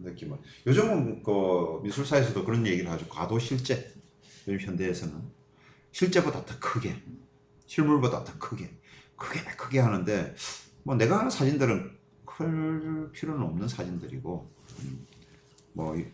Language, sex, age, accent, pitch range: Korean, male, 40-59, native, 100-145 Hz